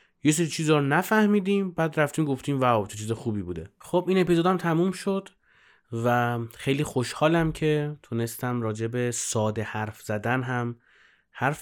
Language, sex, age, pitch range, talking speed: Persian, male, 30-49, 110-135 Hz, 145 wpm